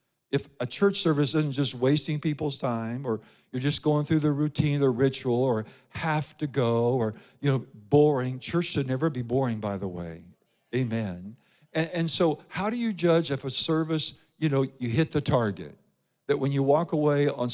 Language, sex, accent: English, male, American